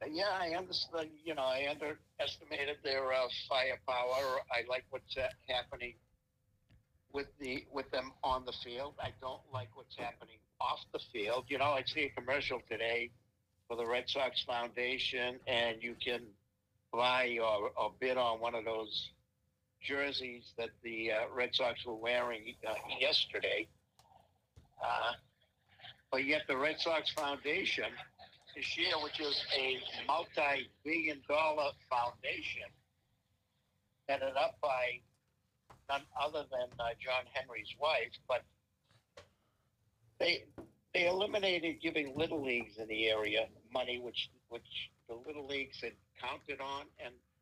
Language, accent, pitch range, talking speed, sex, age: English, American, 115-140 Hz, 135 wpm, male, 60-79